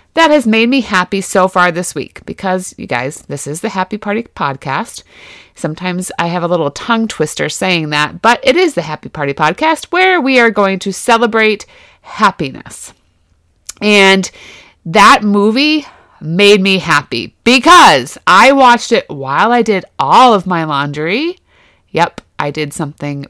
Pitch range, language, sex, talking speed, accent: 170-250 Hz, English, female, 160 wpm, American